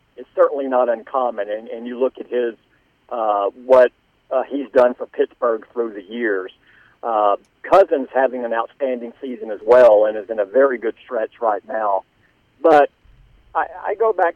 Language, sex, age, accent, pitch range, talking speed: English, male, 50-69, American, 120-160 Hz, 175 wpm